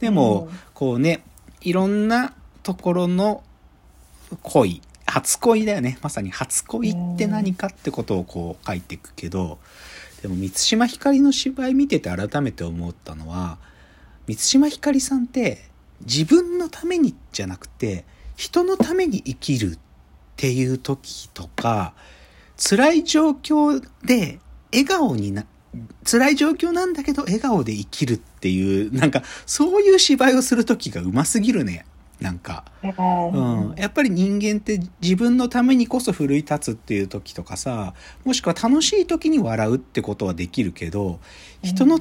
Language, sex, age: Japanese, male, 40-59